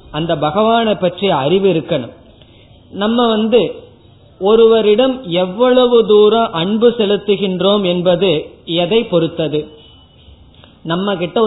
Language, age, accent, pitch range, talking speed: Tamil, 30-49, native, 175-225 Hz, 90 wpm